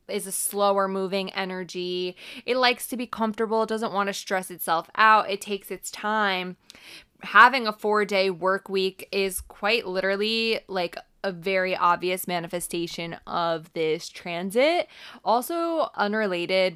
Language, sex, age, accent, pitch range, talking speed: English, female, 20-39, American, 170-200 Hz, 140 wpm